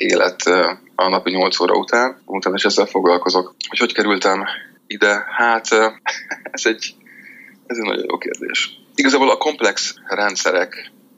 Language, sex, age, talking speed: Hungarian, male, 20-39, 140 wpm